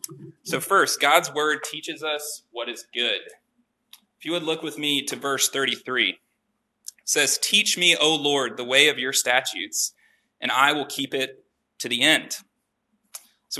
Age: 20-39